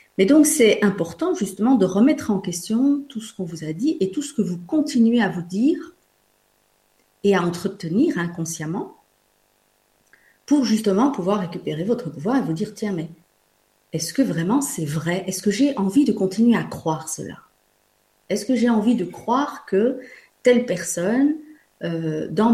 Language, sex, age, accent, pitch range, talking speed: French, female, 40-59, French, 165-245 Hz, 170 wpm